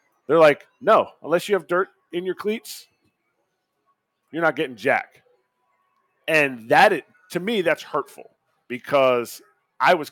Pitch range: 135-200 Hz